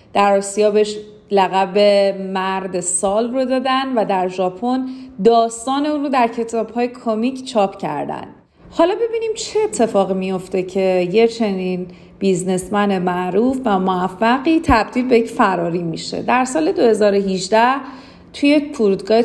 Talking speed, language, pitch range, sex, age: 135 wpm, Persian, 190-255 Hz, female, 40-59